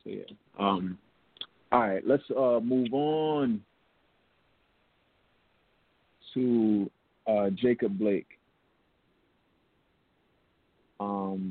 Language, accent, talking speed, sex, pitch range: English, American, 75 wpm, male, 105-125 Hz